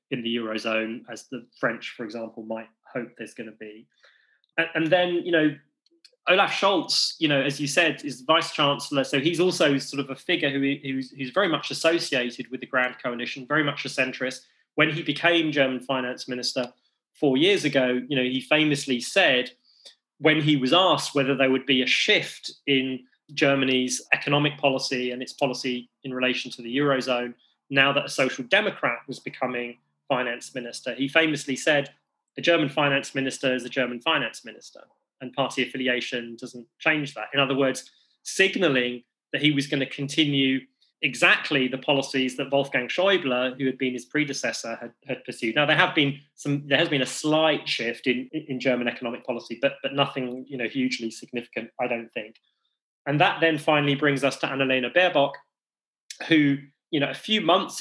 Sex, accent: male, British